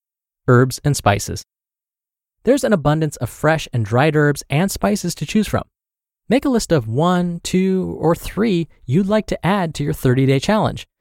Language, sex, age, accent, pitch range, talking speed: English, male, 20-39, American, 120-180 Hz, 175 wpm